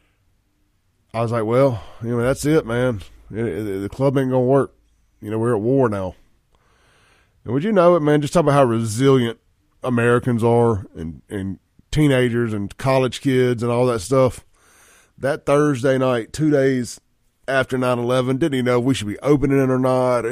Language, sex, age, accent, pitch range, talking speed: English, male, 20-39, American, 105-135 Hz, 185 wpm